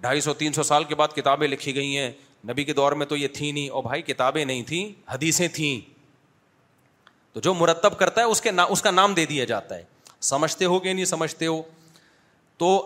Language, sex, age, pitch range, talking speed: Urdu, male, 30-49, 140-185 Hz, 225 wpm